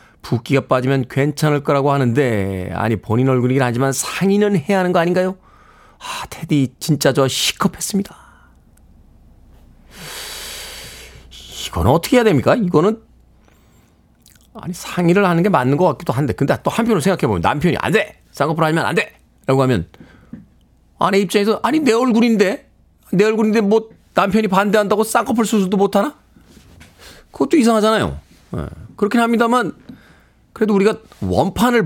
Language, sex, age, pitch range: Korean, male, 40-59, 140-215 Hz